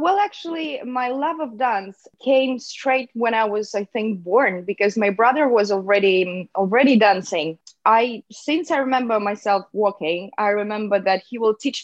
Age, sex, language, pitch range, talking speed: 20-39, female, English, 195-250 Hz, 165 wpm